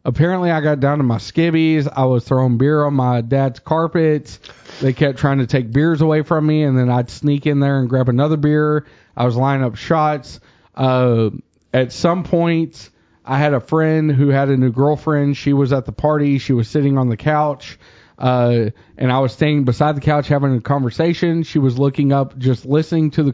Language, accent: English, American